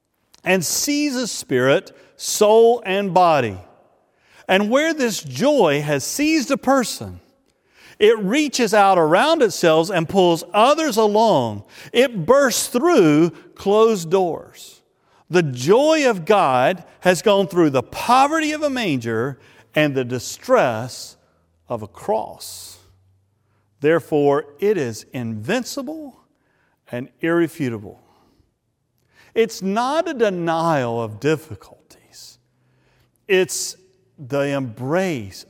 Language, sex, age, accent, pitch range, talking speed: English, male, 50-69, American, 130-200 Hz, 105 wpm